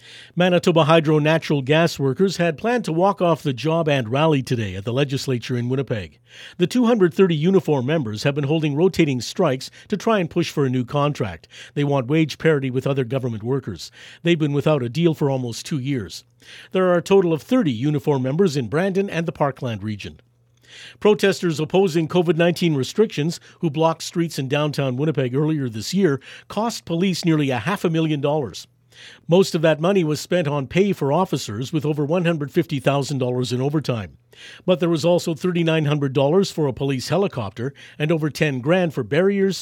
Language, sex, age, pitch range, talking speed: English, male, 50-69, 130-175 Hz, 180 wpm